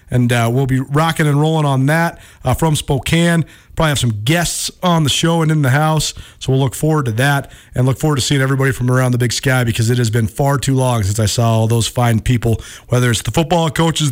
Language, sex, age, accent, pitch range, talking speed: English, male, 40-59, American, 120-155 Hz, 250 wpm